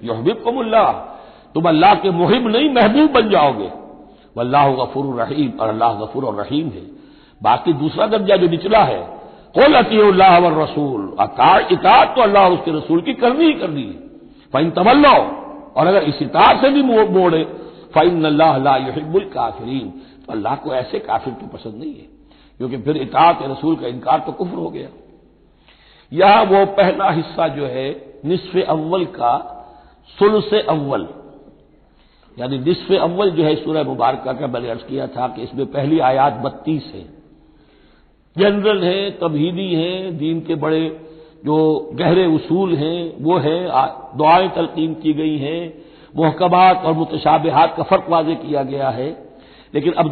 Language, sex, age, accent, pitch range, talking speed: Hindi, male, 60-79, native, 140-185 Hz, 75 wpm